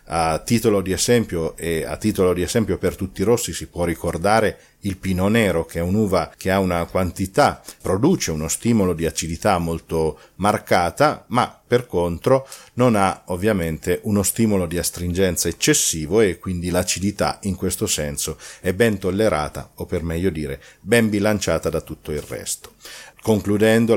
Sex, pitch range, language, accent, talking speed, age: male, 85-105 Hz, Italian, native, 160 wpm, 40-59